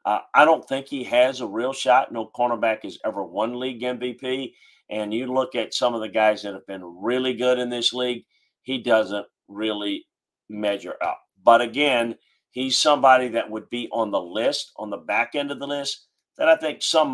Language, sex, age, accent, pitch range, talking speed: English, male, 40-59, American, 105-125 Hz, 205 wpm